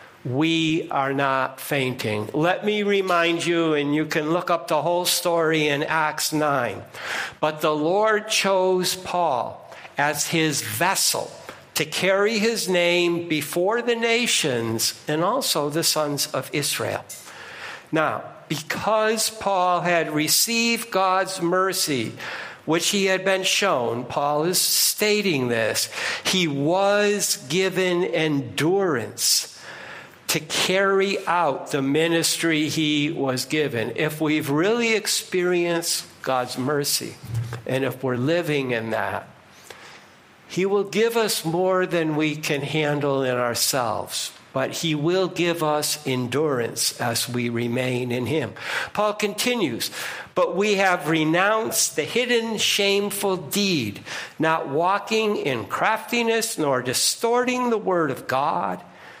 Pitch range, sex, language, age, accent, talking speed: 145-195 Hz, male, English, 60-79, American, 125 wpm